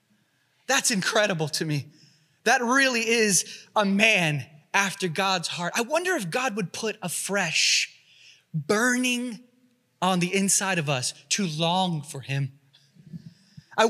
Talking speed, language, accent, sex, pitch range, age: 135 wpm, English, American, male, 180-230 Hz, 20-39